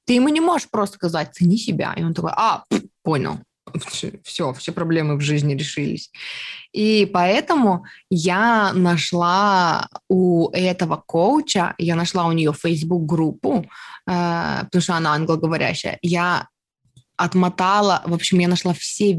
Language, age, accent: Russian, 20-39, native